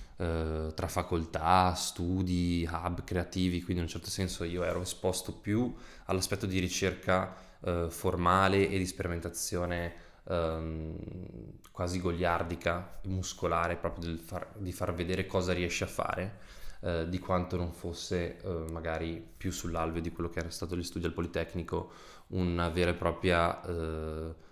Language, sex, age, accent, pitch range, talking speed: Italian, male, 20-39, native, 85-95 Hz, 145 wpm